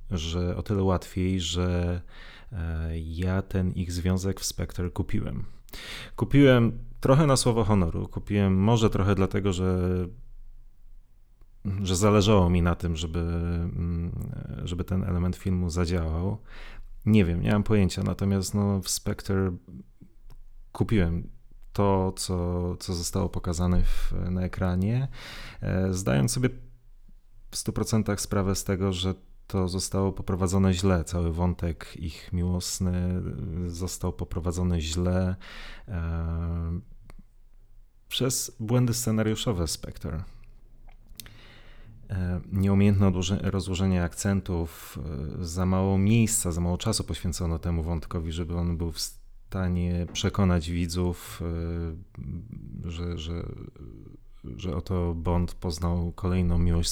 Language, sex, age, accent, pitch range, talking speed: Polish, male, 30-49, native, 90-105 Hz, 105 wpm